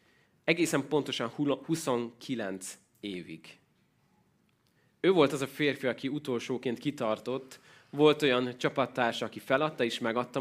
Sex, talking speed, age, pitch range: male, 110 wpm, 20-39, 115-145 Hz